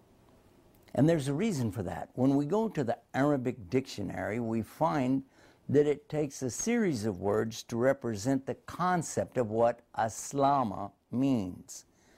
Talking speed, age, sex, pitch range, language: 150 wpm, 60-79, male, 110-140 Hz, Arabic